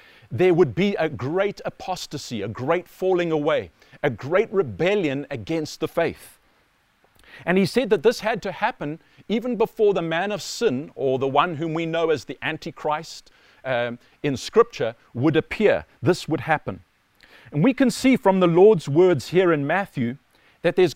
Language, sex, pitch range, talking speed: English, male, 145-205 Hz, 170 wpm